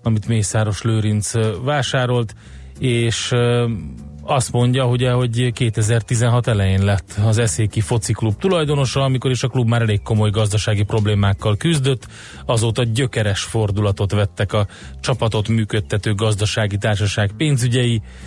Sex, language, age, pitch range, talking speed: male, Hungarian, 30-49, 105-120 Hz, 115 wpm